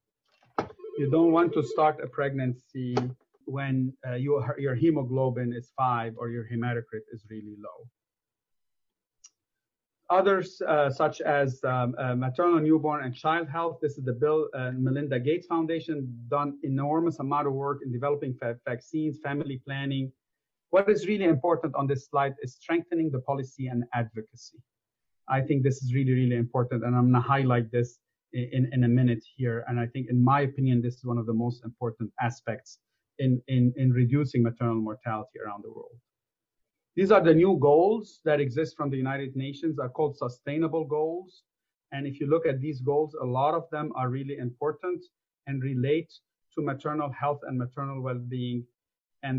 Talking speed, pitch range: 175 wpm, 125-150 Hz